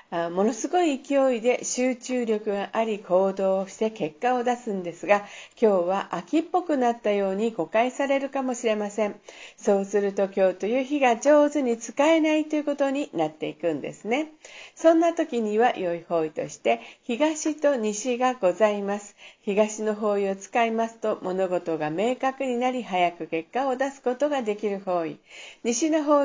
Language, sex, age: Japanese, female, 50-69